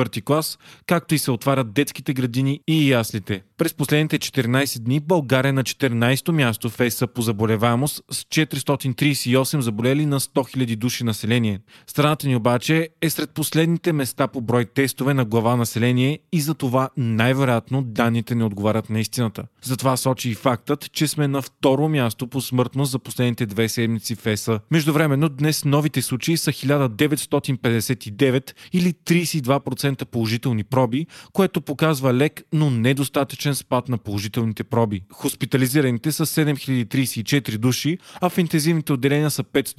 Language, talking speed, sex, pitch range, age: Bulgarian, 140 wpm, male, 120-145 Hz, 30-49